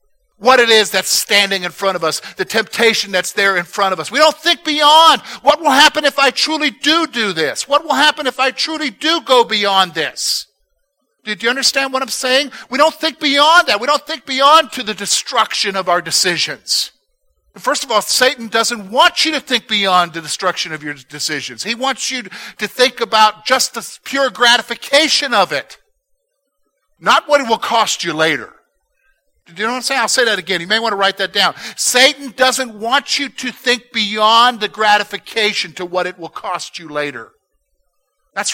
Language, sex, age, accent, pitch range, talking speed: English, male, 50-69, American, 200-290 Hz, 200 wpm